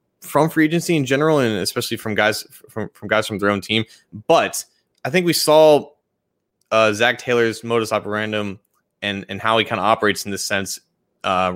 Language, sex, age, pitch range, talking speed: English, male, 20-39, 105-130 Hz, 190 wpm